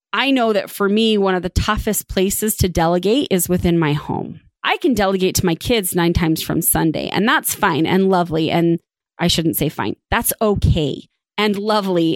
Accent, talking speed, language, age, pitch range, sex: American, 195 wpm, English, 30-49, 180-215 Hz, female